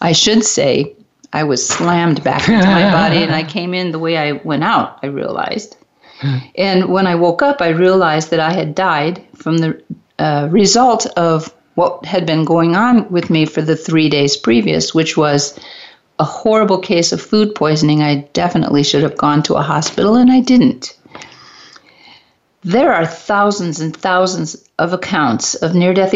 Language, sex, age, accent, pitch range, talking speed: English, female, 50-69, American, 165-215 Hz, 175 wpm